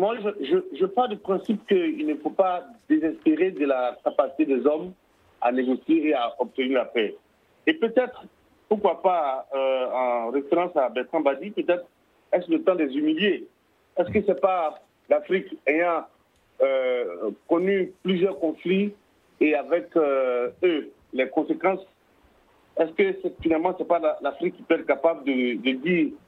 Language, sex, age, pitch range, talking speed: French, male, 50-69, 145-215 Hz, 170 wpm